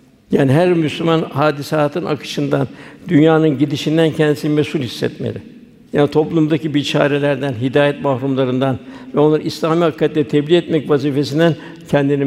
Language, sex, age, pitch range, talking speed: Turkish, male, 60-79, 140-160 Hz, 110 wpm